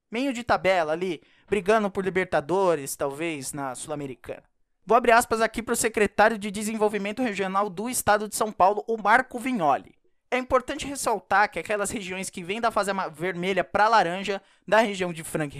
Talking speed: 175 wpm